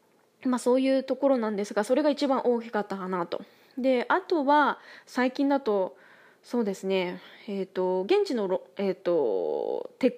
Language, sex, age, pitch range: Japanese, female, 20-39, 200-300 Hz